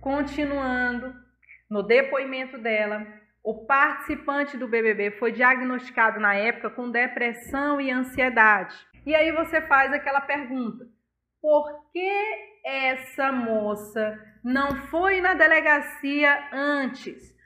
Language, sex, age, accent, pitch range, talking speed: Portuguese, female, 30-49, Brazilian, 230-285 Hz, 105 wpm